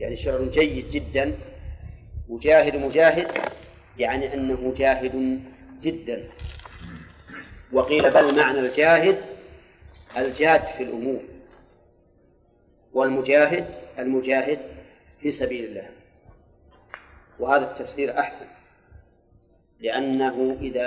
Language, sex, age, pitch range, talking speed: Arabic, male, 40-59, 85-140 Hz, 80 wpm